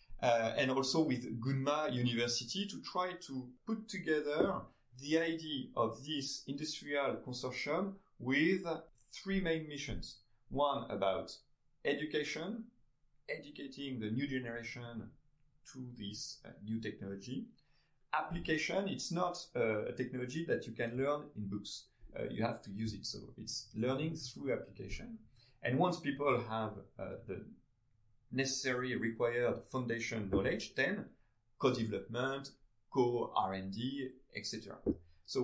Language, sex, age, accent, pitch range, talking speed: French, male, 30-49, French, 115-150 Hz, 120 wpm